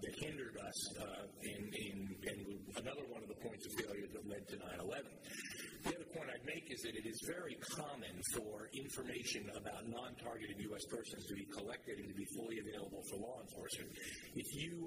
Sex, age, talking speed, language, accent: male, 50-69, 195 wpm, English, American